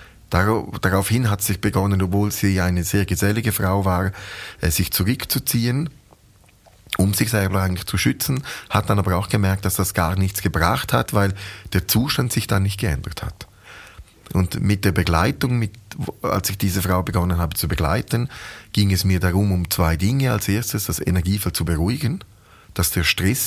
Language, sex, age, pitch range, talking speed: German, male, 30-49, 95-115 Hz, 170 wpm